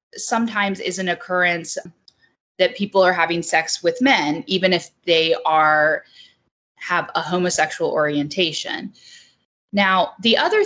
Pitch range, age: 165-210 Hz, 20-39